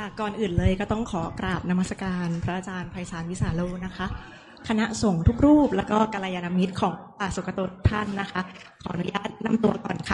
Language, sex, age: Thai, female, 20-39